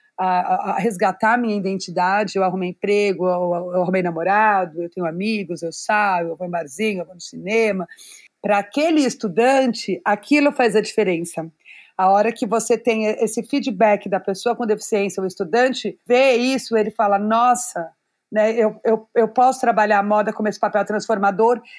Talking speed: 175 wpm